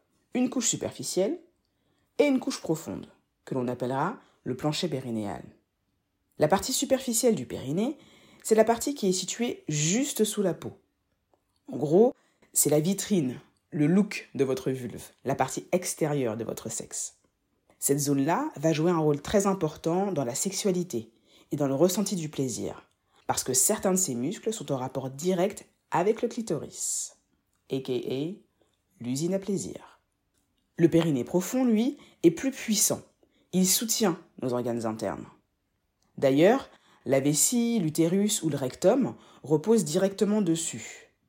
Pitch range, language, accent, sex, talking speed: 135-210 Hz, French, French, female, 145 wpm